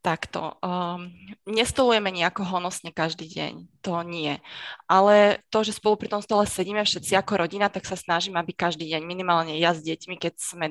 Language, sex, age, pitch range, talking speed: Slovak, female, 20-39, 170-195 Hz, 180 wpm